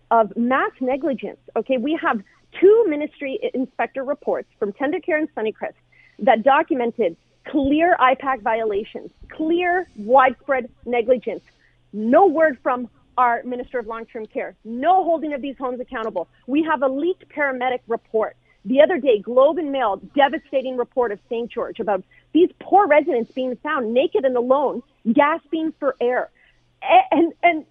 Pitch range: 255-355 Hz